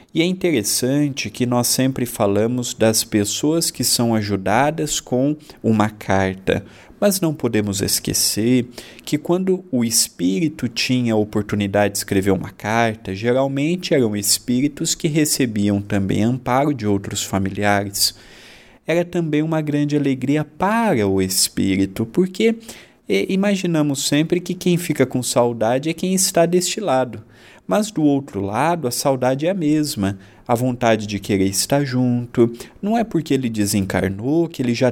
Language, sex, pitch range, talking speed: Portuguese, male, 105-150 Hz, 145 wpm